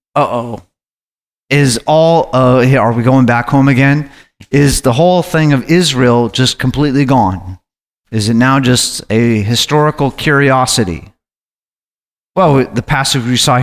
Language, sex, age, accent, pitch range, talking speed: English, male, 30-49, American, 120-145 Hz, 140 wpm